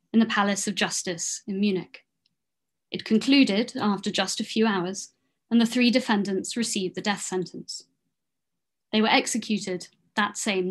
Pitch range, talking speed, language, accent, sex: 190-230 Hz, 150 wpm, English, British, female